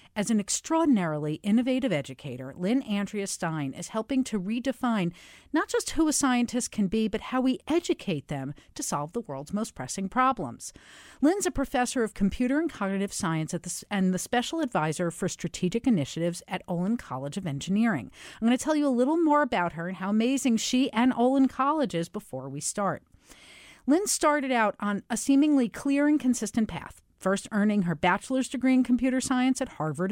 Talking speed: 185 wpm